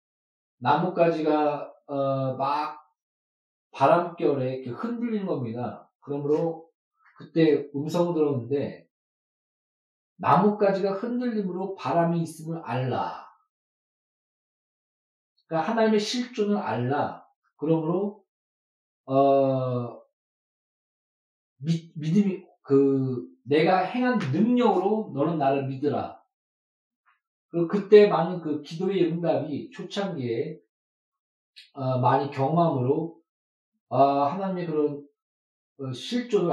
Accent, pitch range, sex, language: native, 135-185 Hz, male, Korean